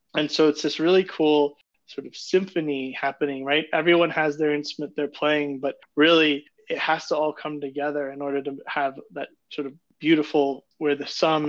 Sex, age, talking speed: male, 20-39, 190 wpm